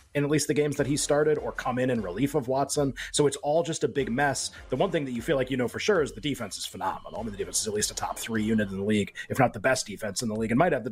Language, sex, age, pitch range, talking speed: English, male, 30-49, 120-155 Hz, 350 wpm